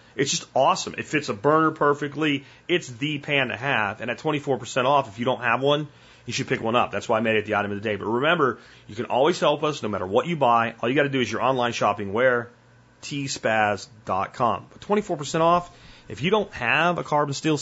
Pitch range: 120-155 Hz